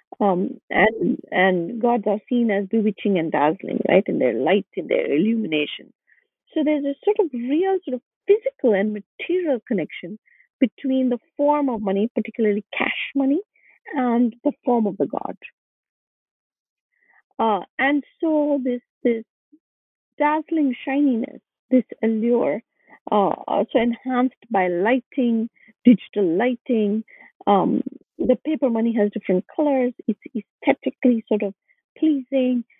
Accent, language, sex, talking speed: Indian, English, female, 130 wpm